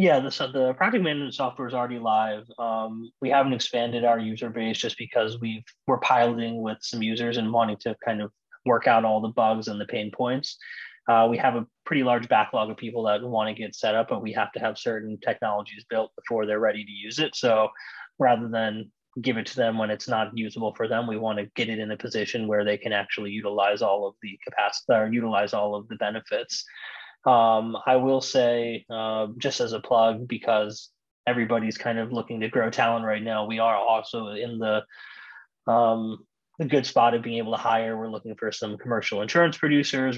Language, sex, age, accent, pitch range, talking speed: English, male, 20-39, American, 110-120 Hz, 215 wpm